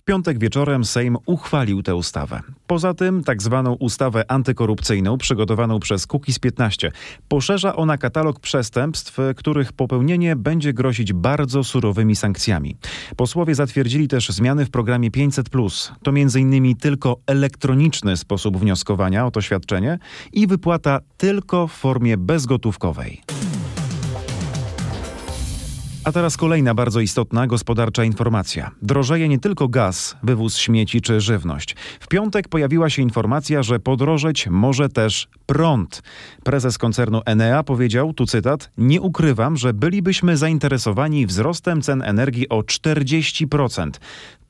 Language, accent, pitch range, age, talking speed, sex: Polish, native, 110-150 Hz, 40-59, 125 wpm, male